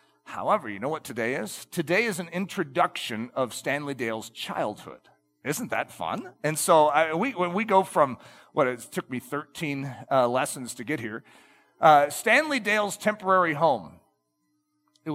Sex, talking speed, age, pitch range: male, 160 wpm, 40-59, 110-175 Hz